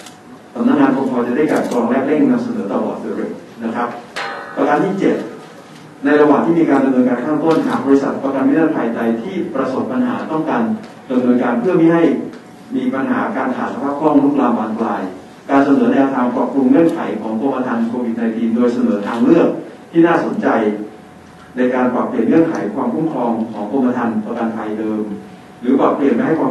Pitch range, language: 120-165 Hz, Thai